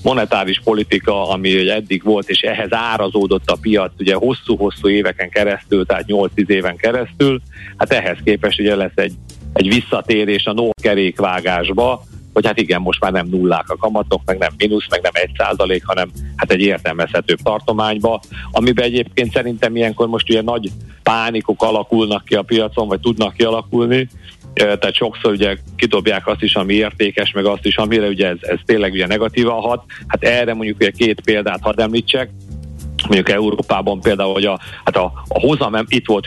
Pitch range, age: 95-110 Hz, 50-69